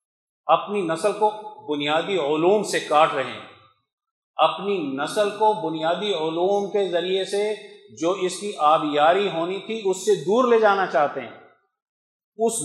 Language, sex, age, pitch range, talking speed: Urdu, male, 50-69, 150-200 Hz, 145 wpm